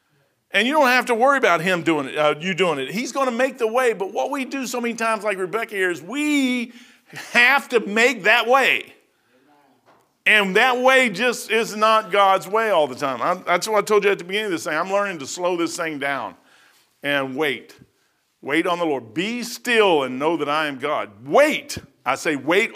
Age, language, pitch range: 50-69, English, 175-240 Hz